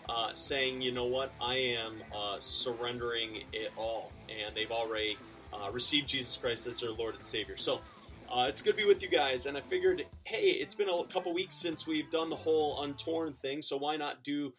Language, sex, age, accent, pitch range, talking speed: English, male, 30-49, American, 120-160 Hz, 215 wpm